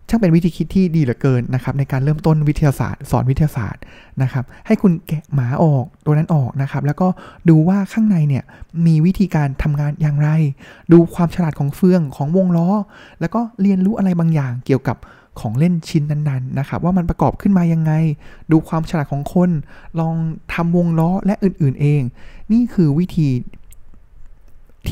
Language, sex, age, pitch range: Thai, male, 20-39, 140-175 Hz